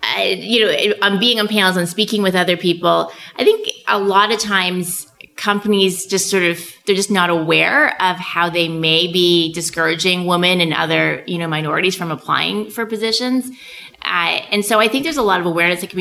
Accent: American